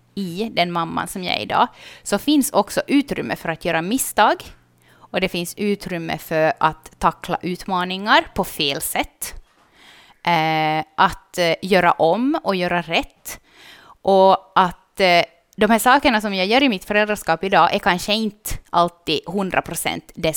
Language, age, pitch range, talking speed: Swedish, 20-39, 170-215 Hz, 150 wpm